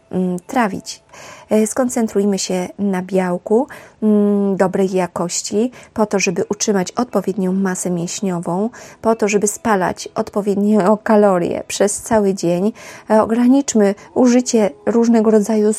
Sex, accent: female, Polish